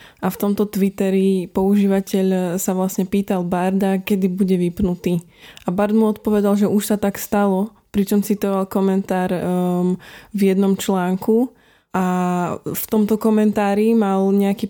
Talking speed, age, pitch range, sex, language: 140 wpm, 20-39, 190-210 Hz, female, Slovak